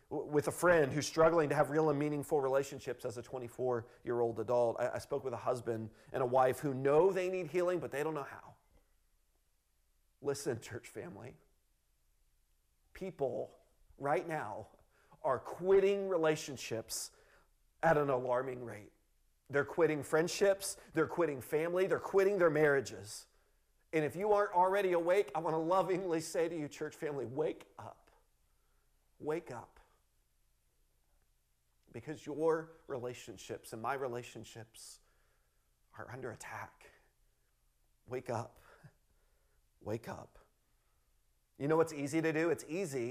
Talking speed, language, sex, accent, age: 135 wpm, English, male, American, 40-59